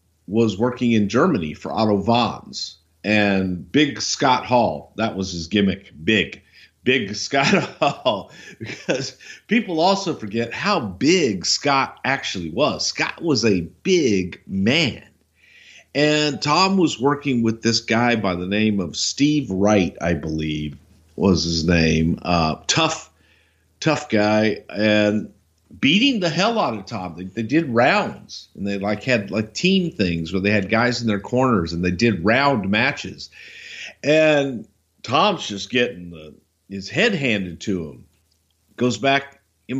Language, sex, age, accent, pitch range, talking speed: English, male, 50-69, American, 90-140 Hz, 145 wpm